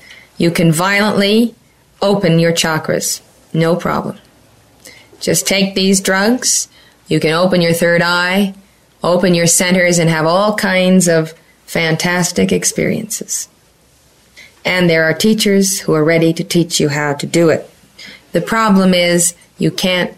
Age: 30-49